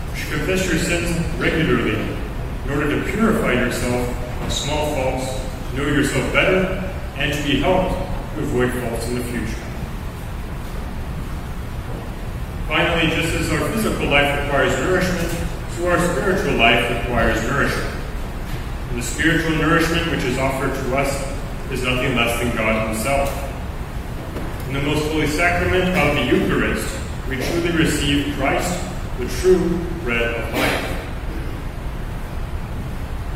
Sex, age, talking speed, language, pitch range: male, 30-49, 130 wpm, English, 120-165 Hz